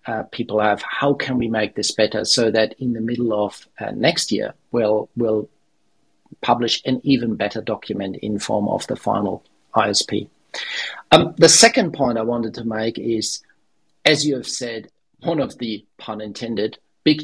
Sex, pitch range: male, 105-120 Hz